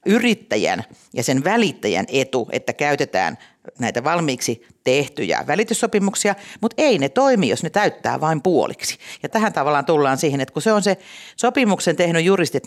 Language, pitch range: Finnish, 165-225 Hz